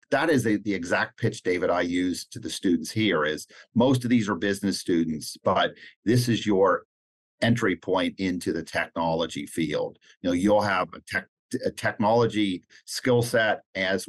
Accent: American